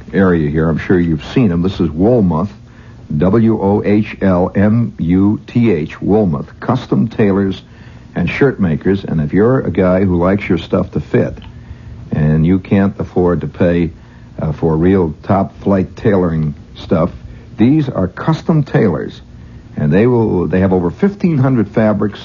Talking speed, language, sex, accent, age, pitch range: 160 wpm, English, male, American, 60-79, 85-110 Hz